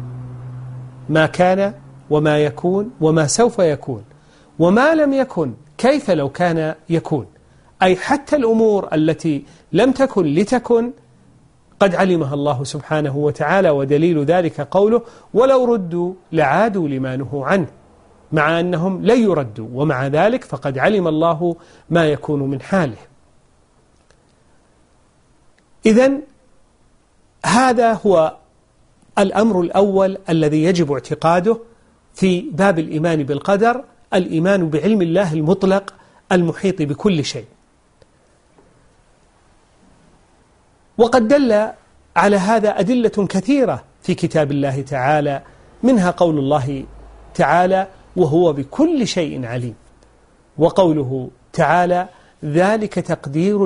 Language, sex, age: Arabic, male, 40-59